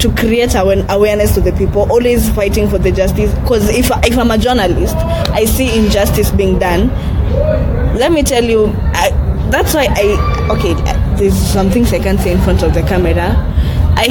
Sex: female